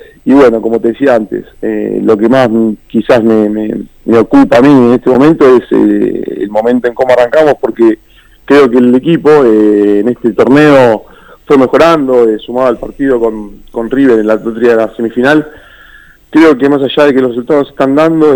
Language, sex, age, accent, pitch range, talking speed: Spanish, male, 40-59, Argentinian, 115-140 Hz, 200 wpm